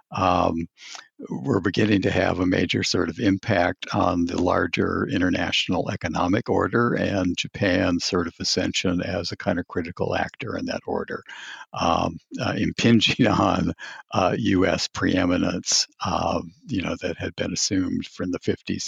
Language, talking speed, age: English, 150 wpm, 60-79